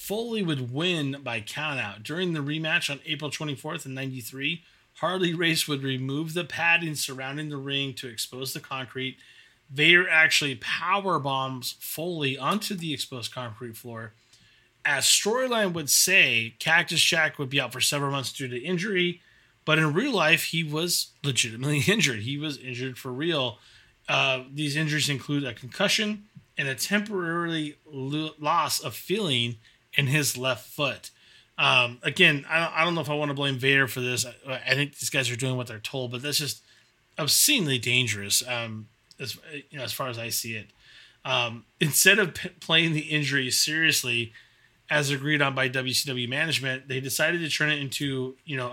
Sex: male